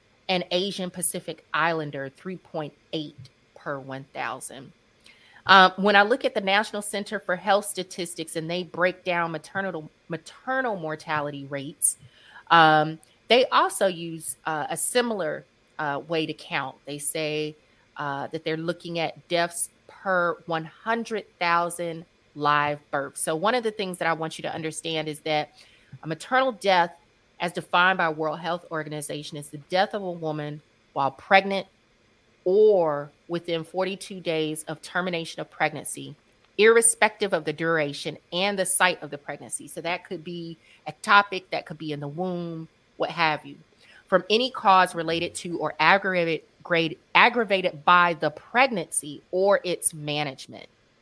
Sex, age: female, 30-49